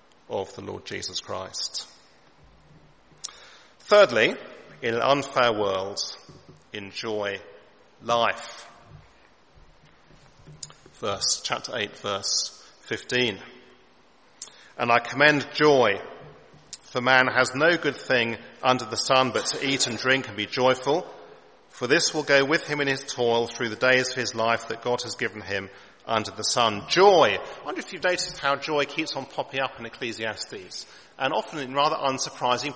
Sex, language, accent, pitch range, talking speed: male, English, British, 120-145 Hz, 145 wpm